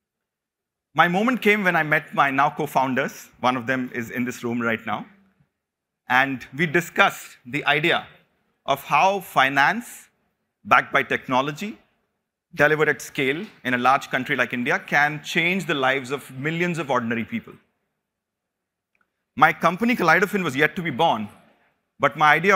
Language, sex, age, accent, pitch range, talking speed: English, male, 30-49, Indian, 130-175 Hz, 155 wpm